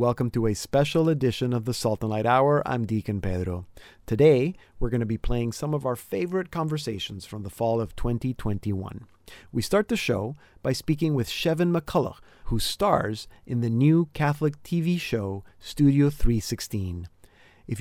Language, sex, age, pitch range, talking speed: English, male, 40-59, 110-145 Hz, 165 wpm